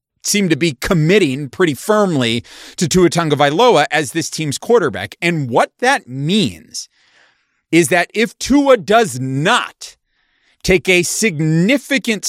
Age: 40-59